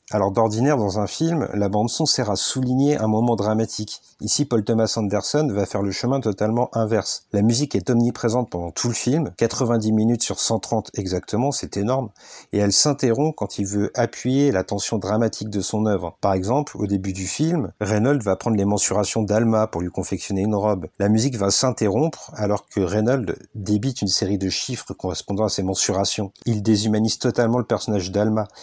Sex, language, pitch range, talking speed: male, French, 100-120 Hz, 190 wpm